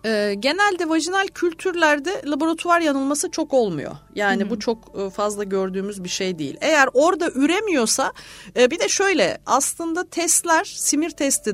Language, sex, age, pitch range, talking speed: Turkish, female, 40-59, 205-285 Hz, 130 wpm